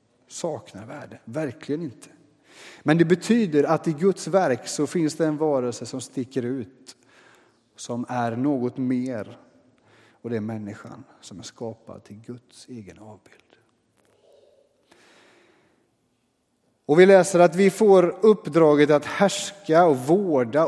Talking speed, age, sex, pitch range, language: 130 wpm, 30-49, male, 125-165 Hz, Swedish